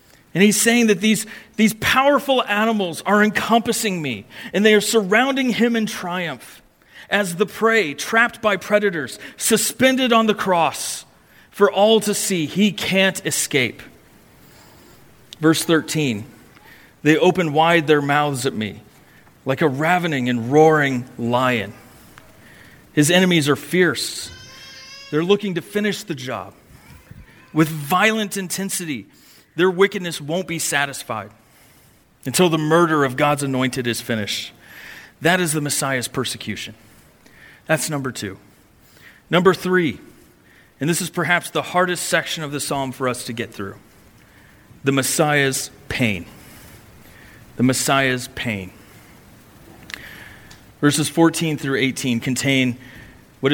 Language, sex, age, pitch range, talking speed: English, male, 40-59, 125-185 Hz, 125 wpm